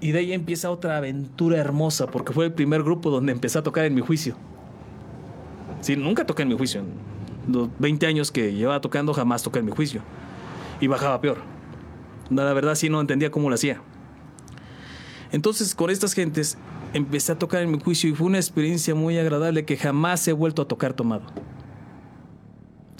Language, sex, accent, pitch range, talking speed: Spanish, male, Mexican, 135-165 Hz, 190 wpm